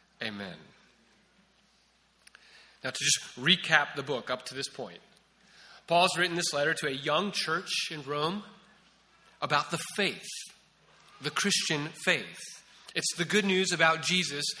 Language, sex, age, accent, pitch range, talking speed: English, male, 30-49, American, 155-195 Hz, 135 wpm